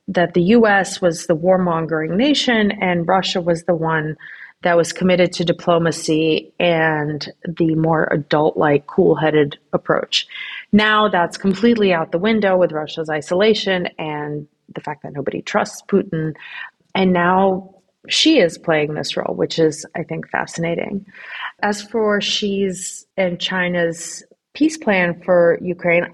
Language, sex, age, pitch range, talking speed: English, female, 30-49, 165-200 Hz, 140 wpm